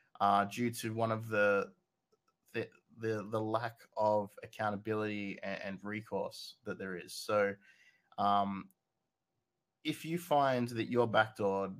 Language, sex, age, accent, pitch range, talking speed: English, male, 20-39, Australian, 100-120 Hz, 130 wpm